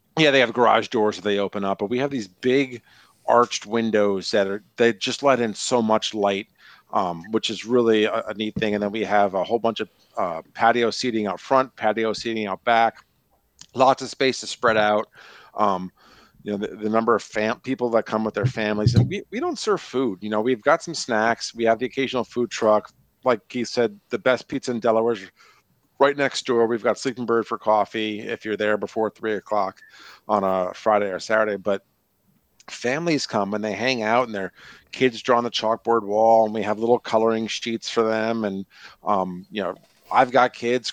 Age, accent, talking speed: 50-69, American, 215 wpm